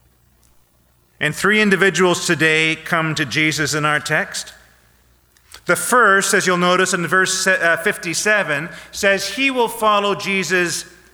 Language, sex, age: English, male, 40-59